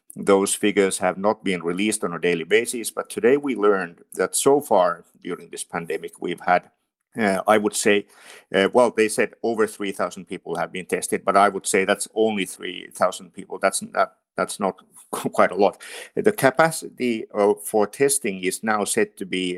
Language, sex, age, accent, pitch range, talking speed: Finnish, male, 50-69, native, 95-125 Hz, 185 wpm